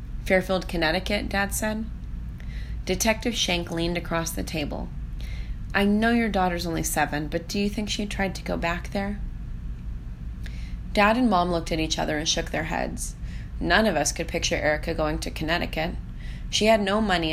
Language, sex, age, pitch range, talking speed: English, female, 30-49, 155-190 Hz, 175 wpm